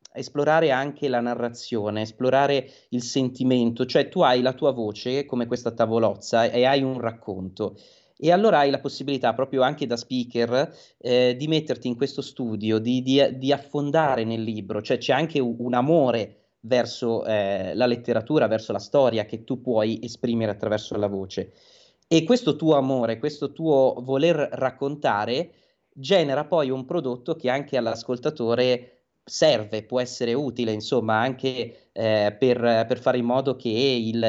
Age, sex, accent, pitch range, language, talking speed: 30-49, male, native, 110-135 Hz, Italian, 155 wpm